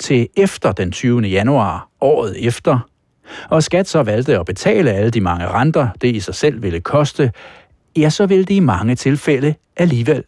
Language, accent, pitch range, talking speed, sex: Danish, native, 110-160 Hz, 180 wpm, male